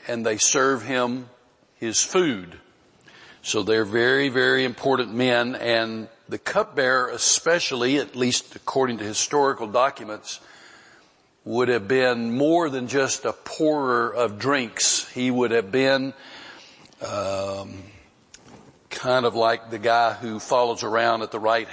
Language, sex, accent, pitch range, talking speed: English, male, American, 115-135 Hz, 135 wpm